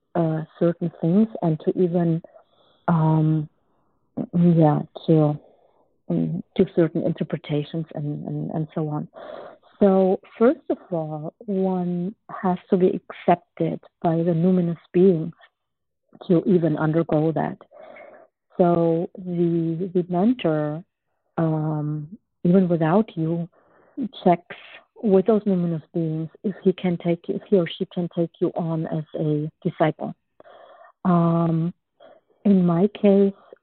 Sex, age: female, 50-69